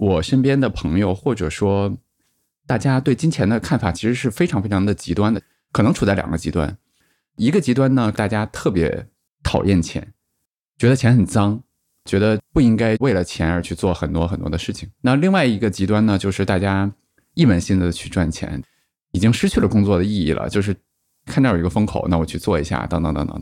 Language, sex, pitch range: Chinese, male, 90-120 Hz